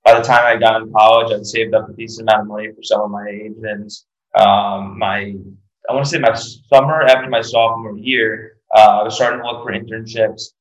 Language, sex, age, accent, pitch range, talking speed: English, male, 20-39, American, 105-115 Hz, 225 wpm